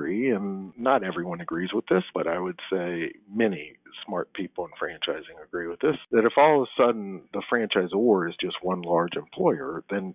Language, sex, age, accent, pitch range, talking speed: English, male, 50-69, American, 90-135 Hz, 190 wpm